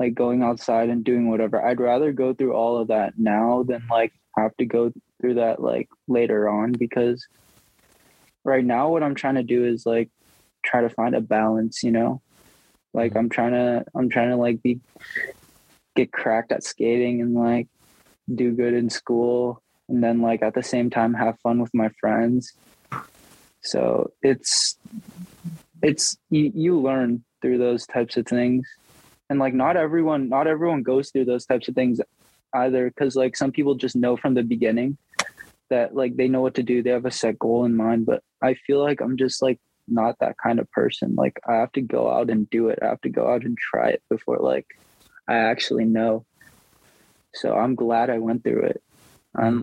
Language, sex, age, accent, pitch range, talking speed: English, male, 20-39, American, 115-130 Hz, 195 wpm